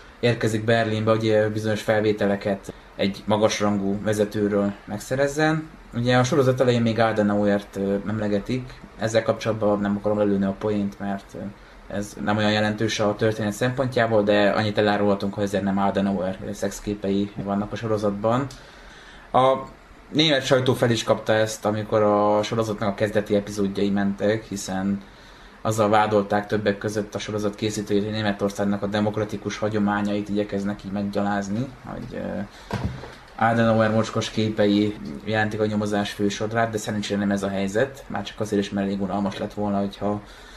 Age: 20-39